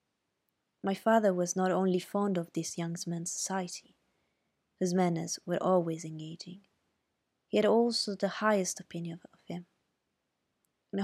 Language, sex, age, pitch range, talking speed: Italian, female, 20-39, 170-195 Hz, 135 wpm